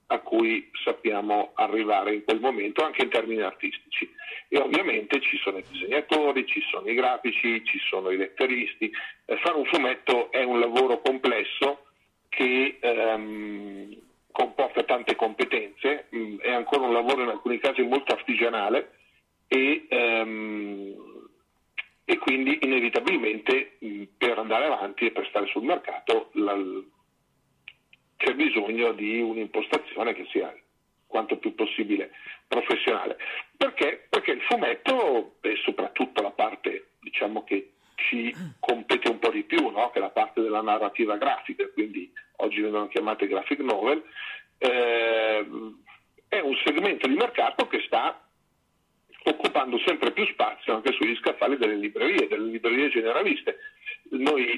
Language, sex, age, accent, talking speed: Italian, male, 40-59, native, 135 wpm